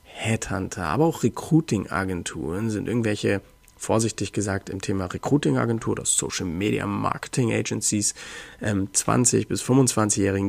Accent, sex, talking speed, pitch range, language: German, male, 110 wpm, 100-115 Hz, German